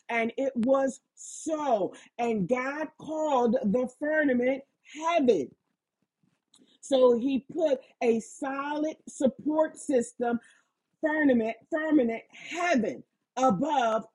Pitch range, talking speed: 220-280 Hz, 90 wpm